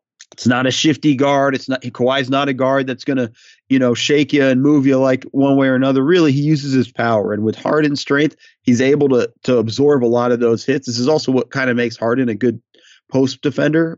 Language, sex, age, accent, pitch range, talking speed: English, male, 30-49, American, 120-145 Hz, 245 wpm